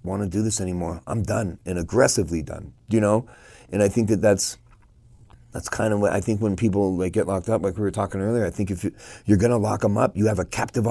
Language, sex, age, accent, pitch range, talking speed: English, male, 30-49, American, 100-120 Hz, 255 wpm